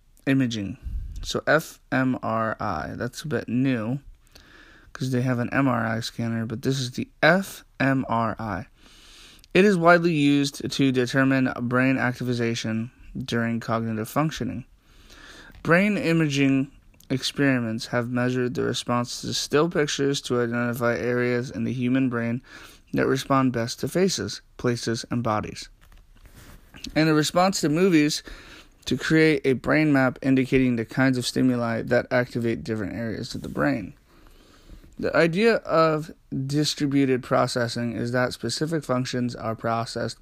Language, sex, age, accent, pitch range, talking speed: English, male, 20-39, American, 115-140 Hz, 130 wpm